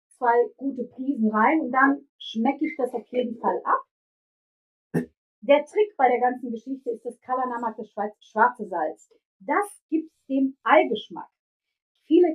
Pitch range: 215-275 Hz